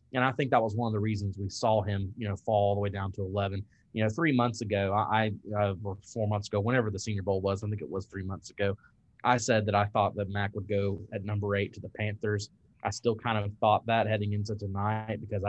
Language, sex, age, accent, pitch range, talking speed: English, male, 20-39, American, 100-115 Hz, 265 wpm